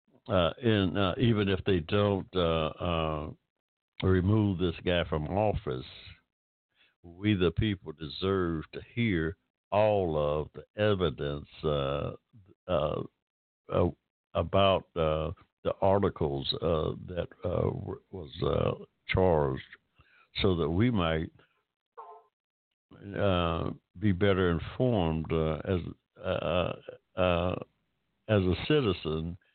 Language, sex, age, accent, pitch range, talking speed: English, male, 60-79, American, 80-100 Hz, 105 wpm